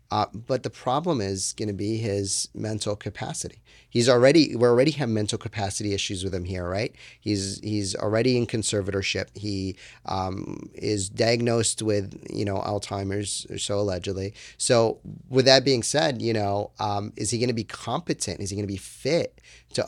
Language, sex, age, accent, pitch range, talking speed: English, male, 30-49, American, 100-115 Hz, 180 wpm